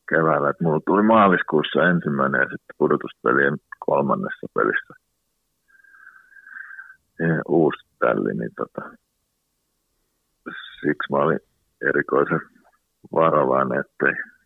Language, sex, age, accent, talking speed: Finnish, male, 50-69, native, 85 wpm